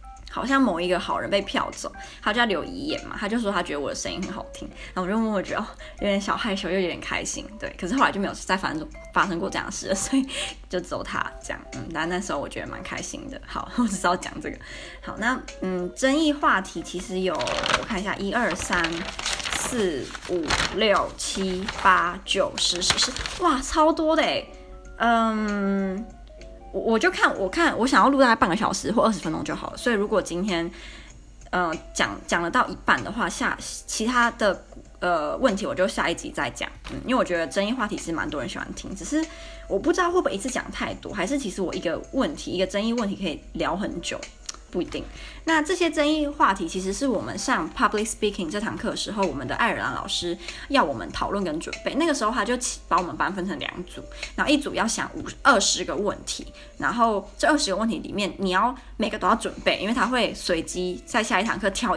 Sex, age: female, 20-39